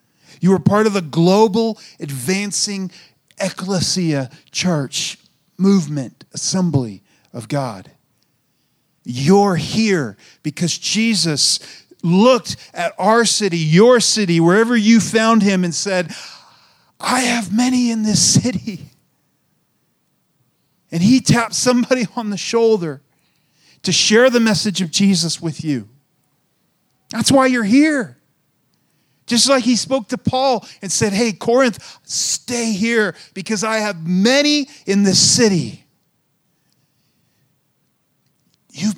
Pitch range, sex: 155-220 Hz, male